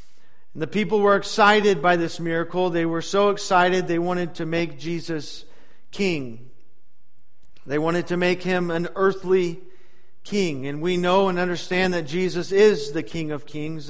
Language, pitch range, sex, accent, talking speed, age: English, 165-200 Hz, male, American, 160 wpm, 50-69